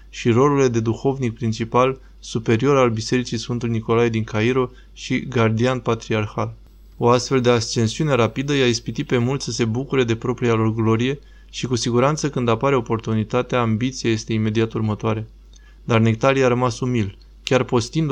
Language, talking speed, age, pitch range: Romanian, 160 wpm, 20-39, 115-130 Hz